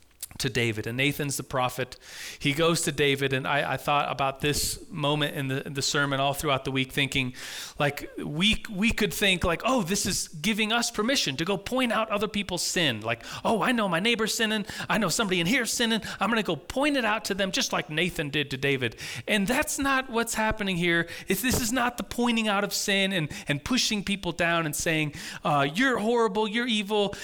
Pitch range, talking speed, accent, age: 135-195 Hz, 220 wpm, American, 30-49